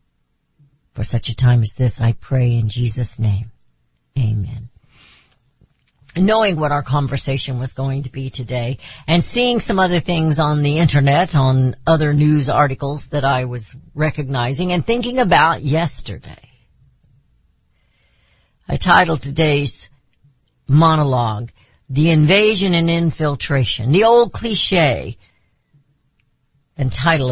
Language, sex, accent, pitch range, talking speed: English, female, American, 125-170 Hz, 120 wpm